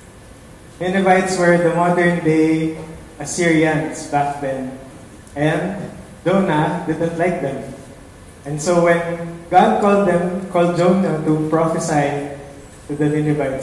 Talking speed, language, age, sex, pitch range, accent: 110 wpm, English, 20-39, male, 135-160 Hz, Filipino